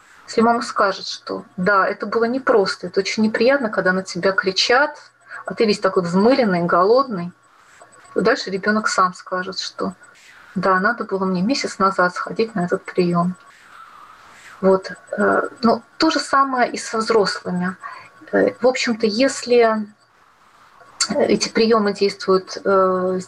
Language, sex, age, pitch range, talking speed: Russian, female, 30-49, 190-235 Hz, 130 wpm